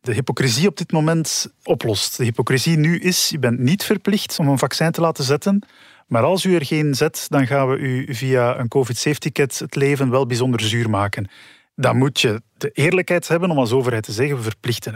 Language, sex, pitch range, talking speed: Dutch, male, 120-150 Hz, 210 wpm